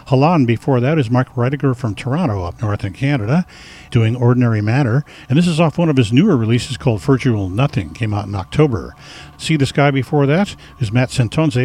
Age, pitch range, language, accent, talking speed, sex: 50-69, 110-140 Hz, English, American, 200 wpm, male